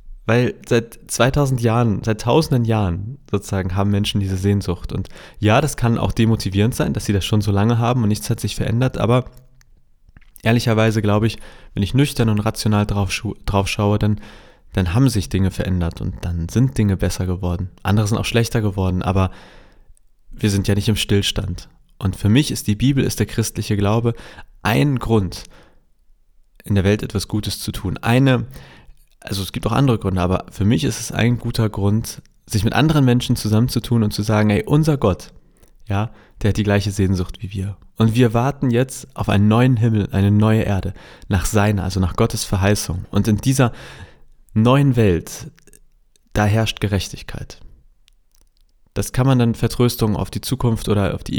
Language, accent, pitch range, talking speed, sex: German, German, 100-120 Hz, 180 wpm, male